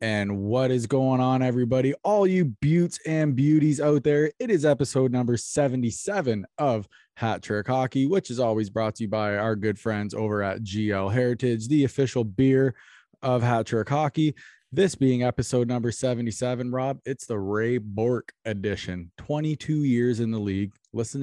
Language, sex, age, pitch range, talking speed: English, male, 20-39, 105-130 Hz, 170 wpm